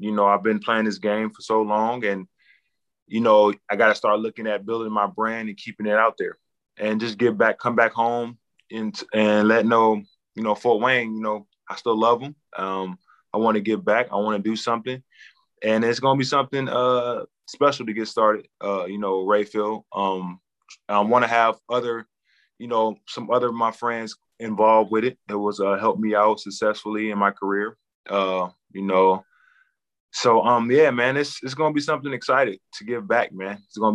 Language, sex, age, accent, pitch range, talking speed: English, male, 20-39, American, 100-115 Hz, 210 wpm